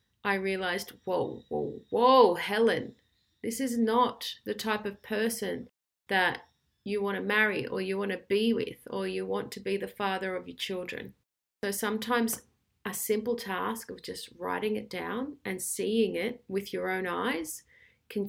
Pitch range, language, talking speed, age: 190-225 Hz, English, 170 wpm, 30-49